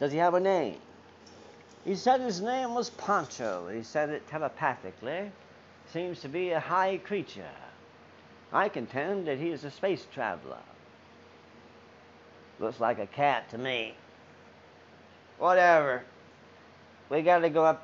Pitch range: 90-145 Hz